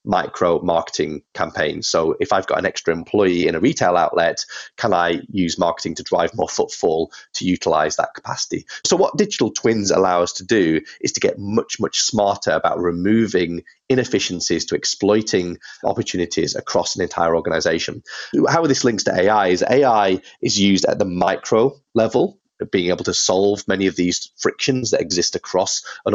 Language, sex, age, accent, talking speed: English, male, 30-49, British, 175 wpm